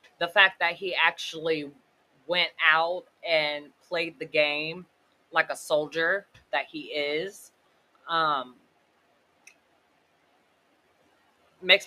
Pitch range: 160-225 Hz